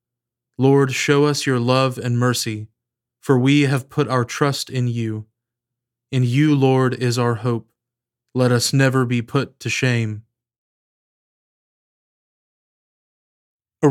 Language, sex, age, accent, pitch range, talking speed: English, male, 20-39, American, 110-135 Hz, 125 wpm